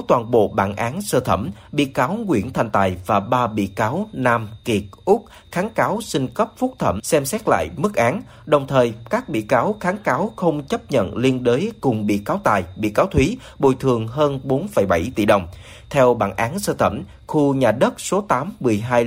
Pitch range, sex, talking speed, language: 105-140 Hz, male, 205 wpm, Vietnamese